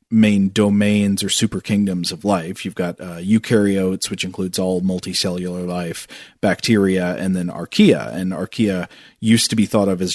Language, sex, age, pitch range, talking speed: English, male, 40-59, 95-115 Hz, 165 wpm